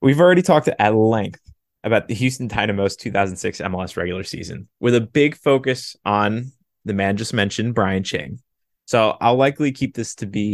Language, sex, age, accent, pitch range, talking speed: English, male, 20-39, American, 100-135 Hz, 175 wpm